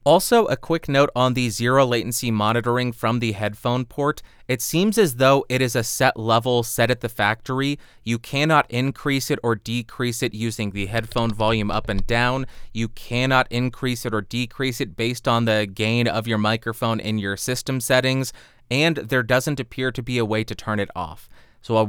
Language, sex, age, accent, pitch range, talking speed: English, male, 30-49, American, 115-135 Hz, 195 wpm